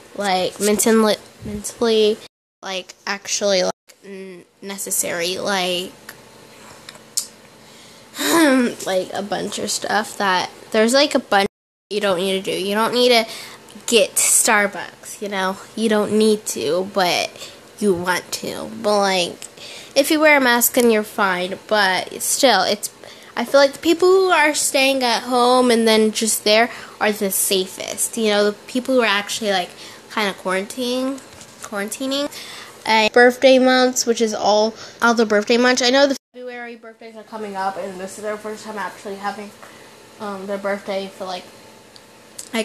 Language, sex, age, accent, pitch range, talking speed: English, female, 10-29, American, 200-255 Hz, 160 wpm